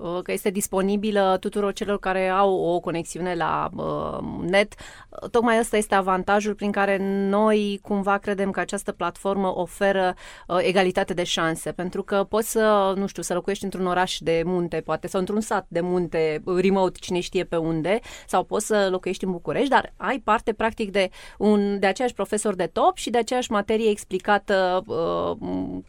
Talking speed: 175 wpm